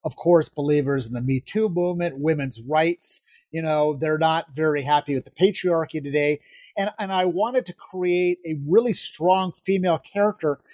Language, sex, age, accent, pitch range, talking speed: English, male, 30-49, American, 155-190 Hz, 175 wpm